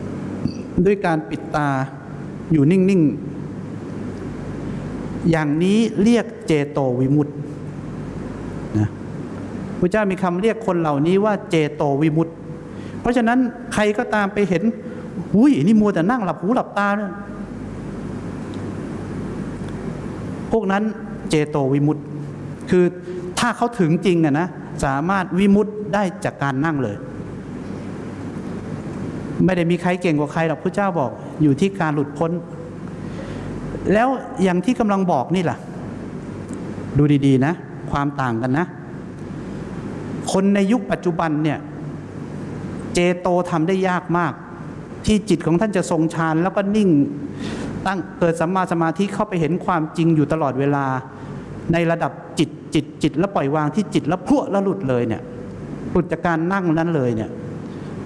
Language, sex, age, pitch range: English, male, 60-79, 150-200 Hz